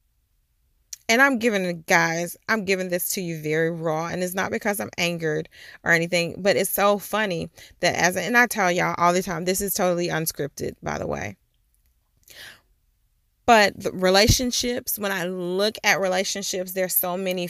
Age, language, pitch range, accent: 30-49, English, 165-195 Hz, American